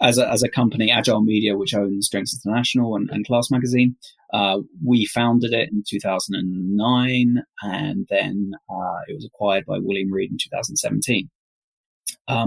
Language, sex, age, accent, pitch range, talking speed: English, male, 20-39, British, 105-140 Hz, 155 wpm